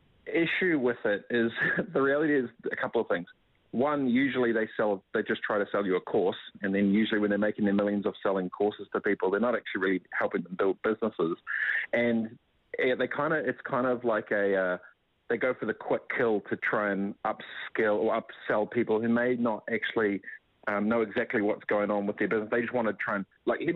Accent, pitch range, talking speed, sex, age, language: Australian, 100-115 Hz, 225 wpm, male, 30-49, English